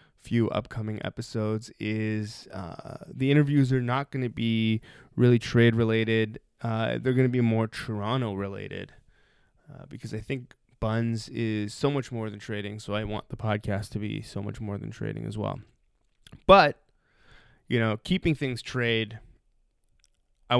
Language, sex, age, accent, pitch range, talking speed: English, male, 20-39, American, 110-130 Hz, 160 wpm